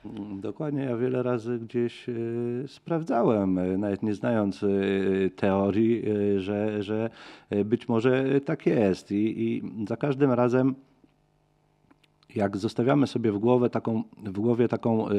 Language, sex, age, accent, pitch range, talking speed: Polish, male, 40-59, native, 100-140 Hz, 135 wpm